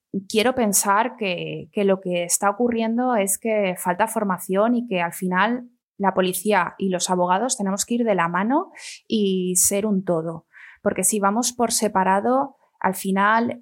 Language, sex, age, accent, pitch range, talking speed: Spanish, female, 20-39, Spanish, 185-225 Hz, 170 wpm